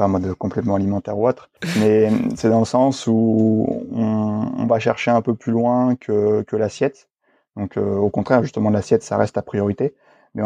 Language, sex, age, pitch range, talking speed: French, male, 20-39, 100-115 Hz, 195 wpm